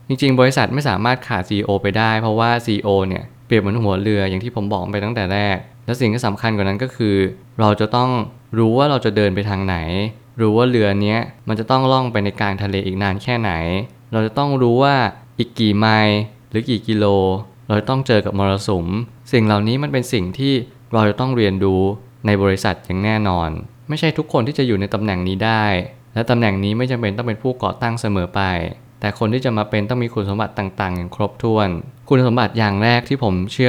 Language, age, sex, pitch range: Thai, 20-39, male, 100-120 Hz